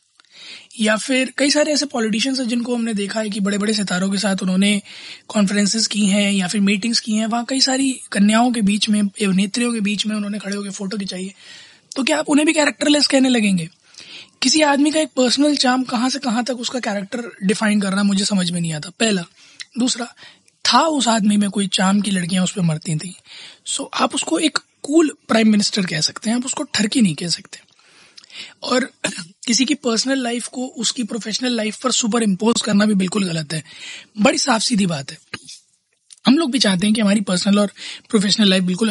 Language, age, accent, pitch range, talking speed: Hindi, 20-39, native, 195-240 Hz, 205 wpm